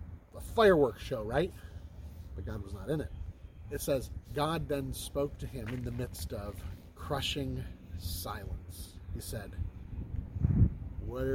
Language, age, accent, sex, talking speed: English, 40-59, American, male, 140 wpm